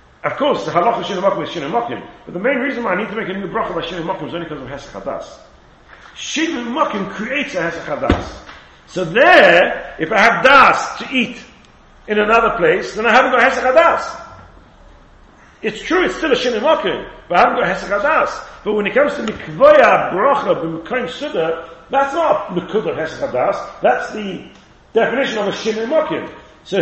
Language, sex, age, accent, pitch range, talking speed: English, male, 40-59, British, 180-280 Hz, 175 wpm